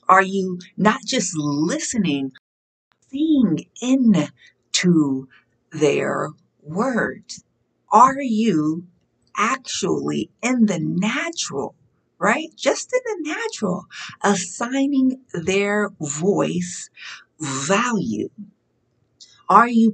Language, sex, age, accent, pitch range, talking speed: English, female, 50-69, American, 165-230 Hz, 80 wpm